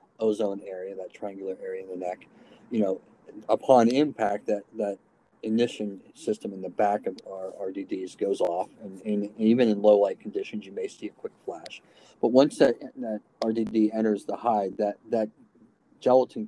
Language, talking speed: English, 175 wpm